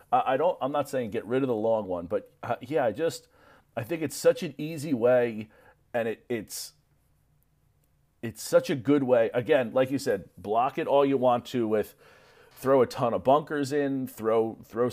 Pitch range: 115-150 Hz